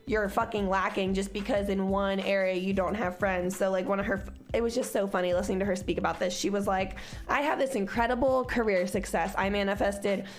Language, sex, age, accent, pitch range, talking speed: English, female, 20-39, American, 195-230 Hz, 225 wpm